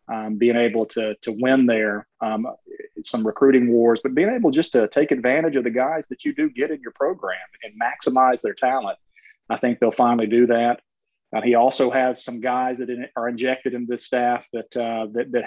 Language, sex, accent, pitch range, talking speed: English, male, American, 115-135 Hz, 210 wpm